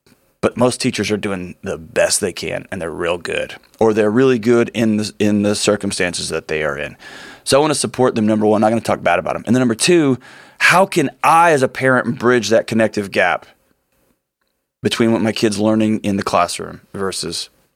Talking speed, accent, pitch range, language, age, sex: 220 wpm, American, 110-145 Hz, English, 30-49, male